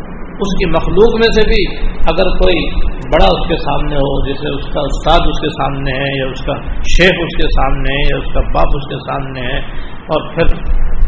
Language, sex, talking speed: Urdu, male, 210 wpm